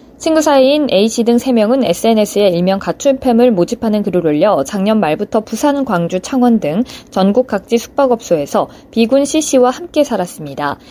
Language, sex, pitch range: Korean, female, 195-265 Hz